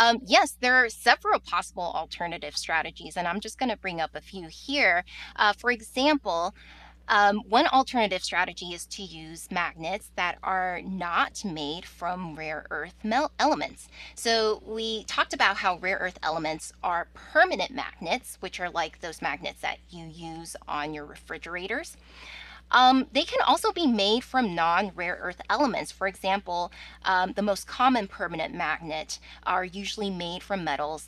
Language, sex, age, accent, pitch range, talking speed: English, female, 20-39, American, 170-220 Hz, 160 wpm